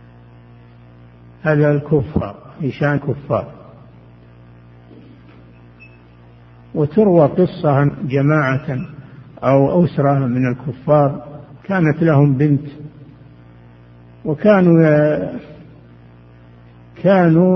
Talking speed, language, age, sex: 55 wpm, Arabic, 60-79, male